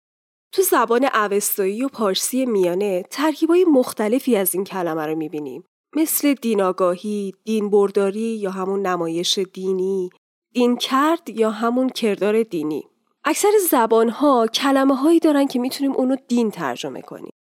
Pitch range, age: 205-275 Hz, 10-29